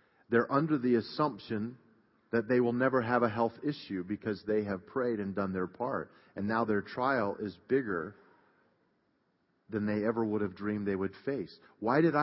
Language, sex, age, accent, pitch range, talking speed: English, male, 40-59, American, 115-150 Hz, 180 wpm